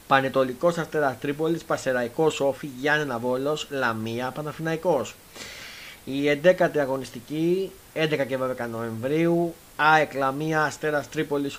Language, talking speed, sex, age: Greek, 105 wpm, male, 30-49